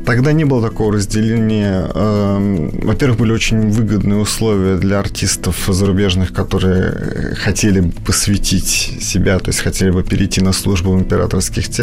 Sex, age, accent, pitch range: male, 30-49, native, 95-115 Hz